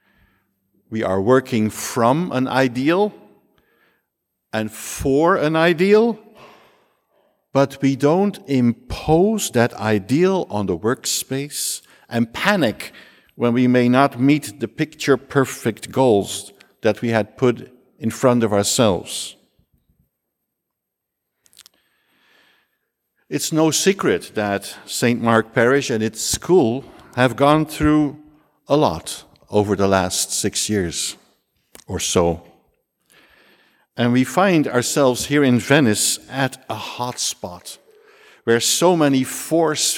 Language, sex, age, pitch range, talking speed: English, male, 60-79, 110-150 Hz, 110 wpm